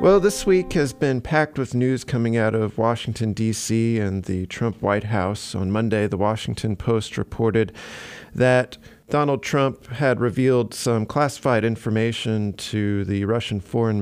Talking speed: 155 wpm